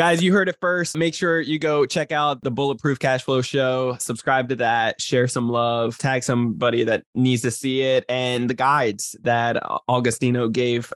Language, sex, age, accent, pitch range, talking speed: English, male, 20-39, American, 120-135 Hz, 185 wpm